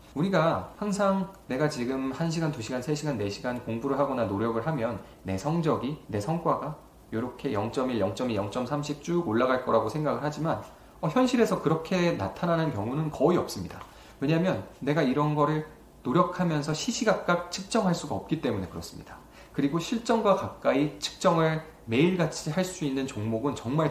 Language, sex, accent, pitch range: Korean, male, native, 130-180 Hz